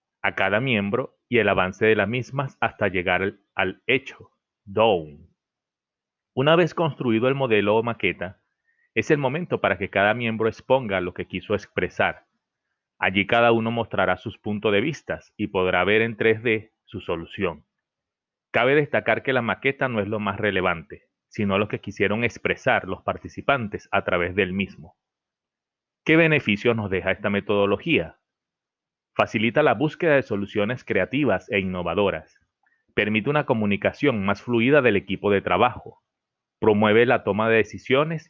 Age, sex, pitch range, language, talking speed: 30-49, male, 100-125 Hz, Spanish, 150 wpm